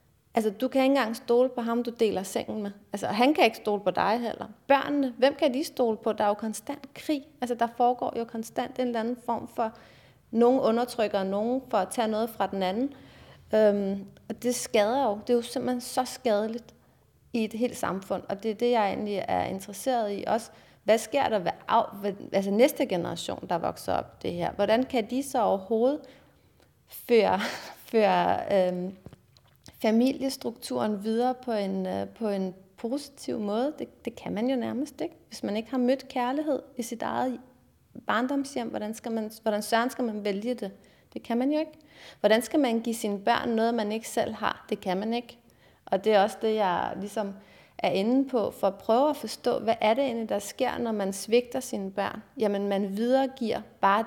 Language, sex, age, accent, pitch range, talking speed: Danish, female, 30-49, native, 205-250 Hz, 200 wpm